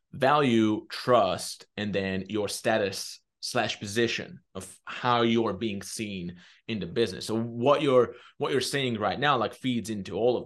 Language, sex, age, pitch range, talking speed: English, male, 30-49, 105-135 Hz, 165 wpm